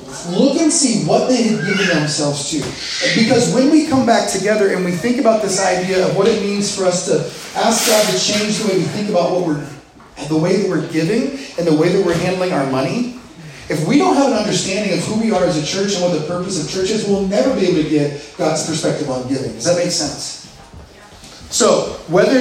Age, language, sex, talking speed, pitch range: 30-49, English, male, 235 wpm, 155-210 Hz